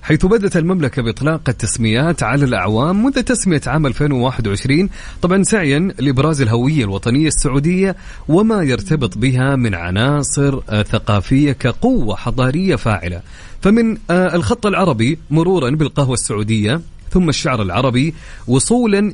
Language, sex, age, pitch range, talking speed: English, male, 30-49, 115-165 Hz, 115 wpm